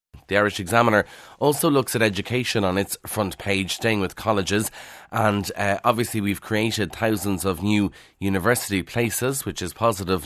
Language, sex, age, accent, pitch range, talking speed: English, male, 30-49, Irish, 95-110 Hz, 160 wpm